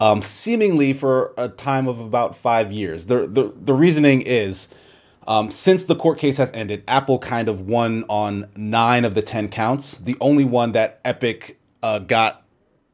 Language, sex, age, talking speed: English, male, 30-49, 175 wpm